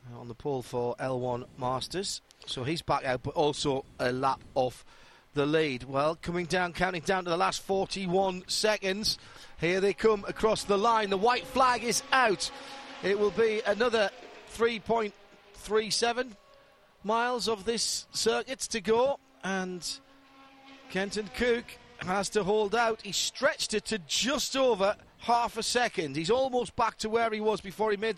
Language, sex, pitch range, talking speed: English, male, 190-230 Hz, 160 wpm